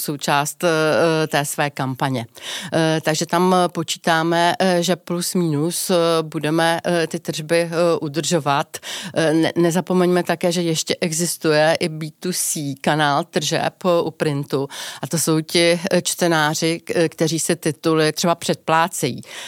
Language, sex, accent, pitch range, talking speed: Czech, female, native, 155-170 Hz, 110 wpm